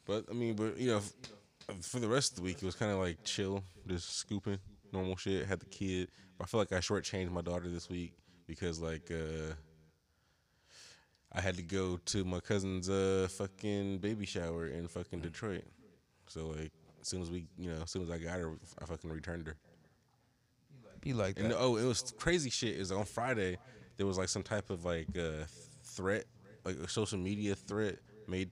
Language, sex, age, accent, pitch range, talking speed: English, male, 20-39, American, 85-105 Hz, 200 wpm